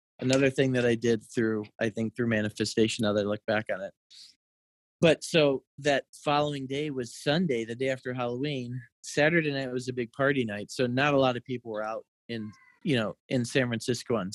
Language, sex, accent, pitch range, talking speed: English, male, American, 115-140 Hz, 210 wpm